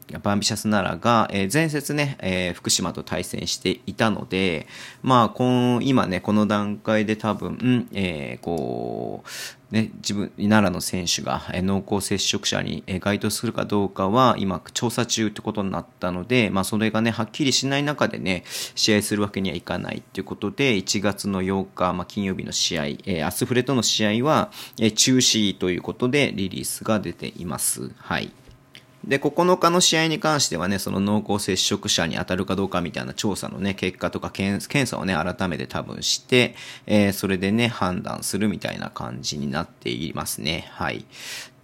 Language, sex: Japanese, male